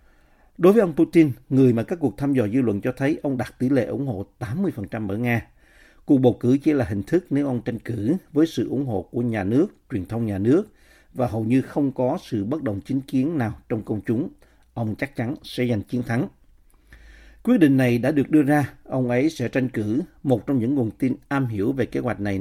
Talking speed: 240 wpm